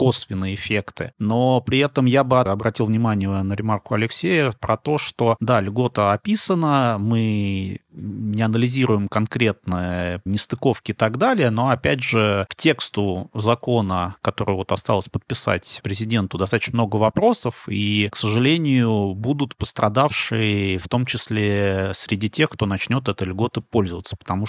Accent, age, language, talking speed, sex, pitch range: native, 30-49, Russian, 135 wpm, male, 100-120 Hz